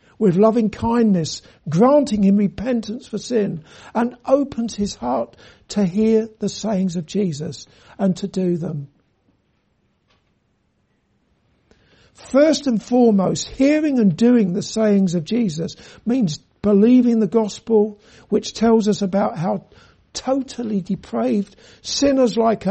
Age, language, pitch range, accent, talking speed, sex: 60-79, English, 190-235 Hz, British, 120 wpm, male